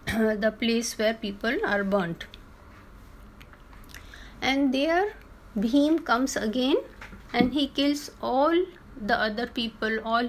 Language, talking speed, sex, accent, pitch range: Hindi, 115 wpm, female, native, 215-285 Hz